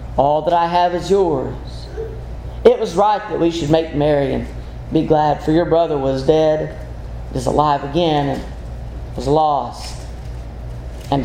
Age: 40-59